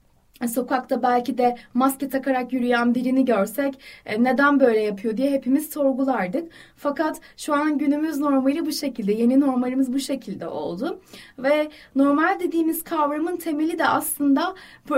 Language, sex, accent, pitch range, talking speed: Turkish, female, native, 240-325 Hz, 135 wpm